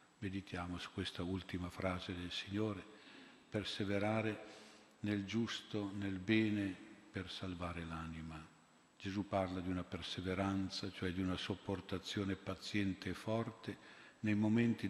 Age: 50-69